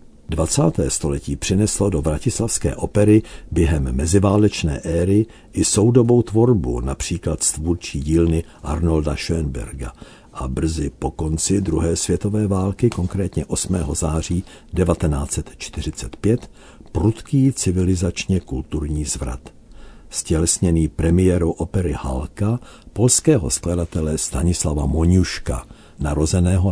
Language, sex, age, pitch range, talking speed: Czech, male, 60-79, 75-100 Hz, 90 wpm